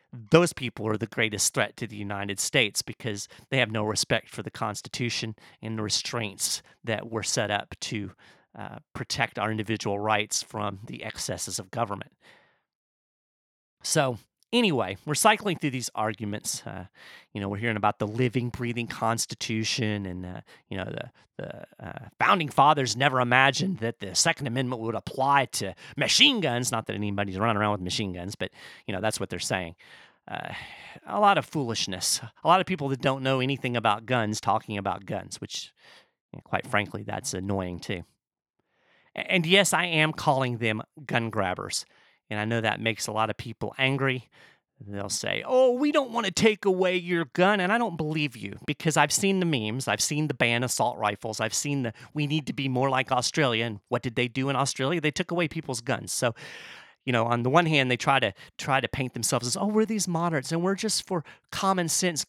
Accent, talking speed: American, 195 wpm